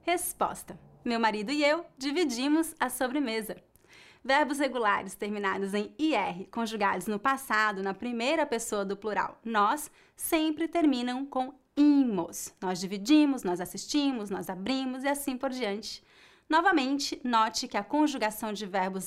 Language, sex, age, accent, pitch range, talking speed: English, female, 20-39, Brazilian, 210-295 Hz, 135 wpm